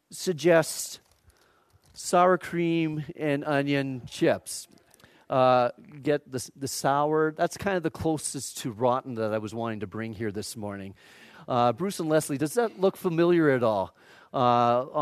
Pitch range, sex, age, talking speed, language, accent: 125-170 Hz, male, 40-59, 150 wpm, English, American